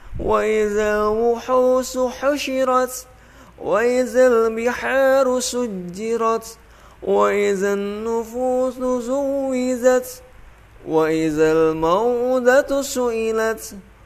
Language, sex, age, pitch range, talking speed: Indonesian, male, 20-39, 195-250 Hz, 50 wpm